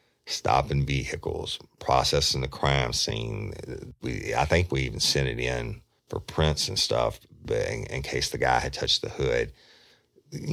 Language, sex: English, male